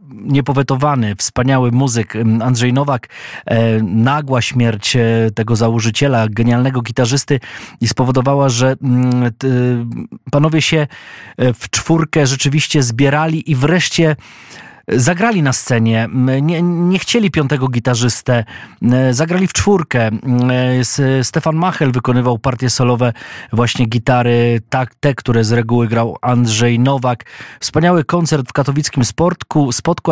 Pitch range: 120-145 Hz